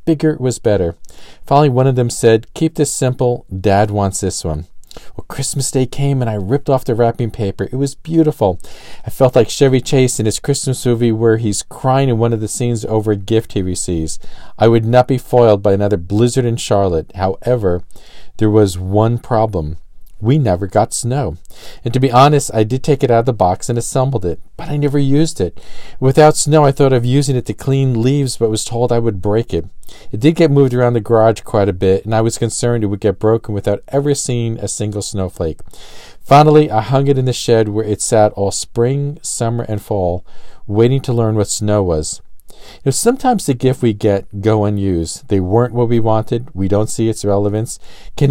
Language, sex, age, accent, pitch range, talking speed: English, male, 40-59, American, 100-130 Hz, 210 wpm